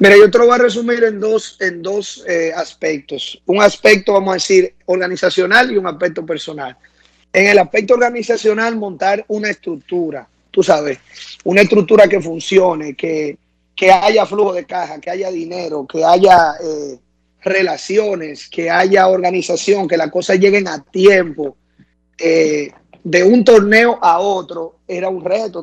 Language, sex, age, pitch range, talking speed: Spanish, male, 30-49, 165-205 Hz, 155 wpm